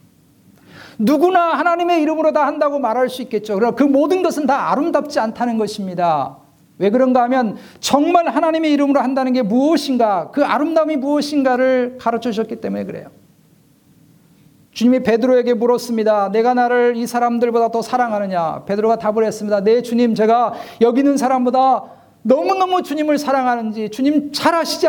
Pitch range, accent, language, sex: 220-275 Hz, native, Korean, male